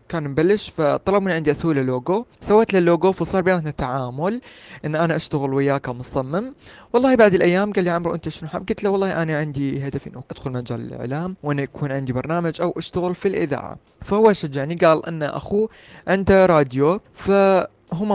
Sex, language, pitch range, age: male, Arabic, 140-185 Hz, 20-39